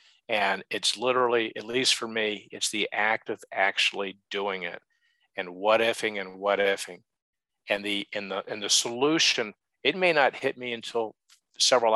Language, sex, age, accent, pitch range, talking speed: English, male, 50-69, American, 100-120 Hz, 170 wpm